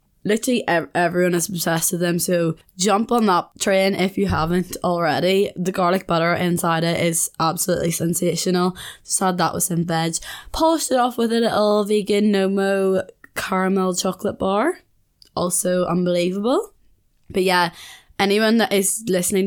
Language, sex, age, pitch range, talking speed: English, female, 20-39, 165-195 Hz, 150 wpm